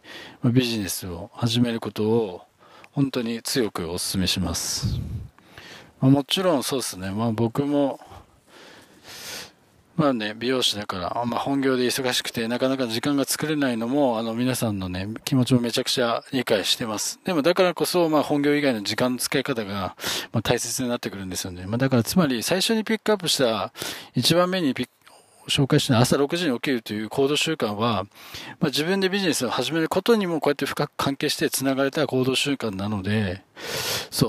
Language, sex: Japanese, male